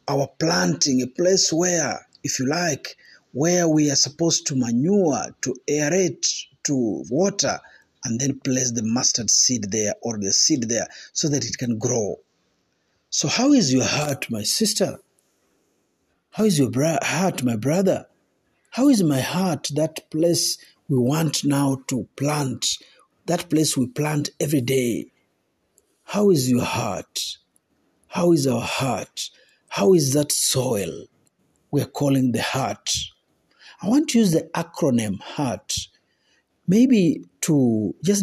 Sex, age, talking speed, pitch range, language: male, 50-69, 145 wpm, 130-175 Hz, Swahili